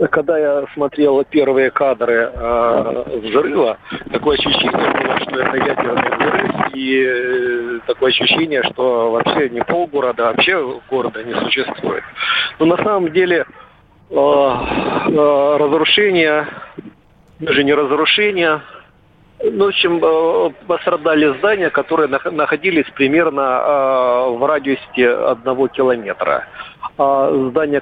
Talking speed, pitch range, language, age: 95 wpm, 130-155 Hz, Russian, 50-69